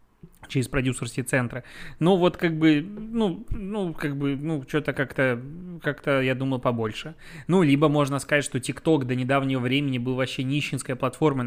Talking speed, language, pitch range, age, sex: 165 wpm, Russian, 125-150 Hz, 20-39, male